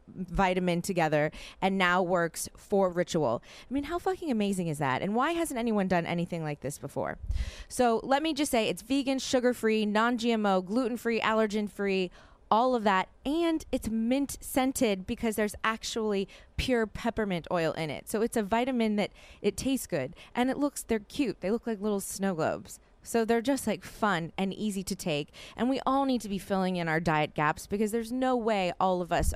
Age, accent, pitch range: 20-39, American, 180-240 Hz